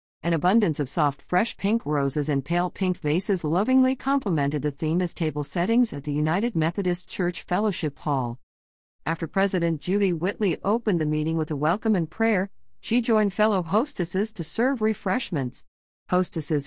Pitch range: 145-195 Hz